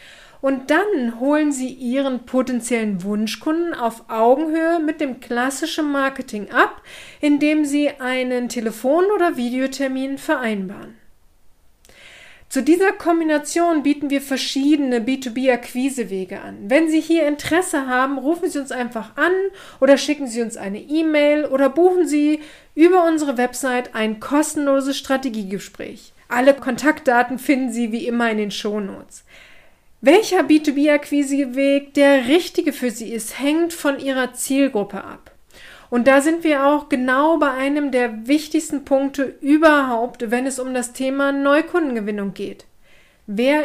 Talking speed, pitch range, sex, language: 140 wpm, 245-300 Hz, female, German